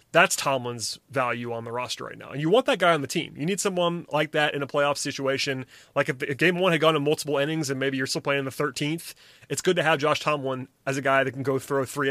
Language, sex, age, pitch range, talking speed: English, male, 30-49, 125-150 Hz, 285 wpm